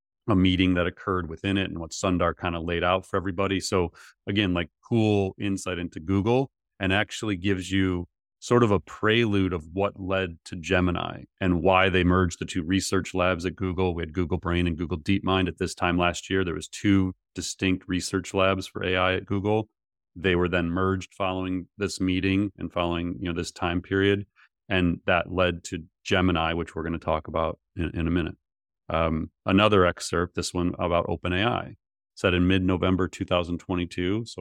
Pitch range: 90-100 Hz